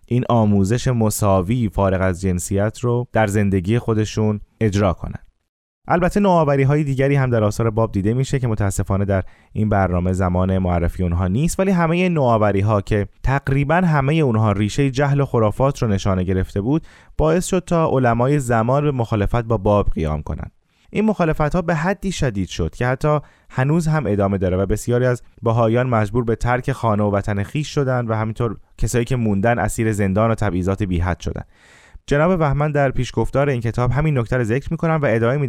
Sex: male